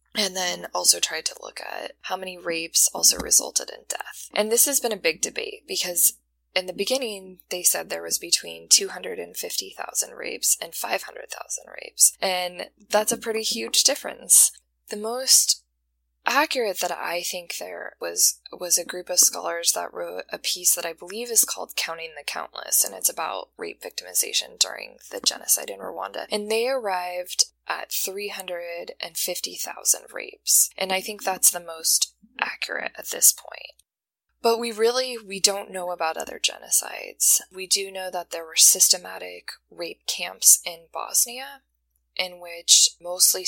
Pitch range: 170-235 Hz